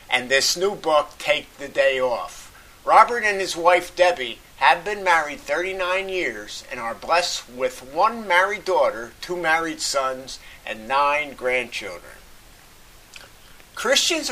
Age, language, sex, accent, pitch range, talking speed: 50-69, English, male, American, 145-210 Hz, 135 wpm